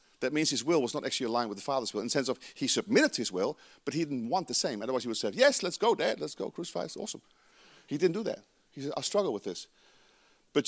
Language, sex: English, male